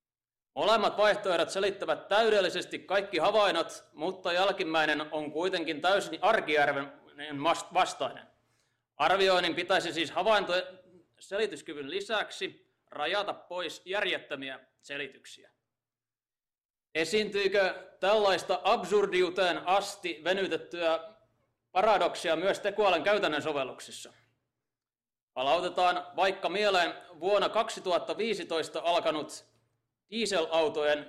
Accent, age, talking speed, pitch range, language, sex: native, 30-49, 75 wpm, 150-195 Hz, Finnish, male